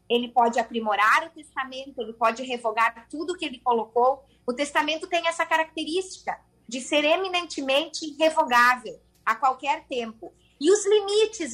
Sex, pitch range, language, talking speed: female, 255-330 Hz, Portuguese, 140 wpm